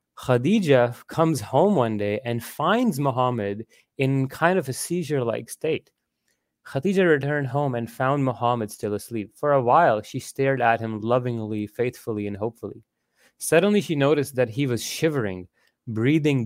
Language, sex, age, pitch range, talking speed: English, male, 30-49, 110-145 Hz, 150 wpm